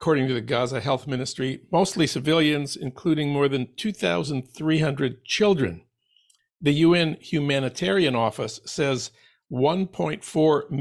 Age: 60-79